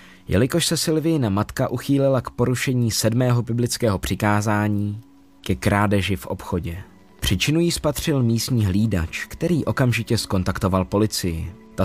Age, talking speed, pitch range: 20-39, 125 wpm, 95-120 Hz